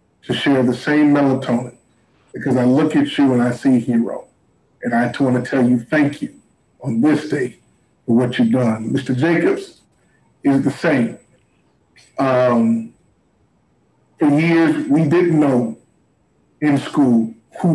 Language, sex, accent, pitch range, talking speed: English, male, American, 125-155 Hz, 150 wpm